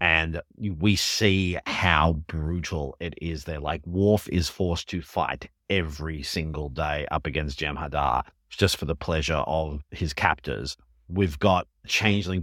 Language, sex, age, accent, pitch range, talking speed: English, male, 30-49, Australian, 80-100 Hz, 145 wpm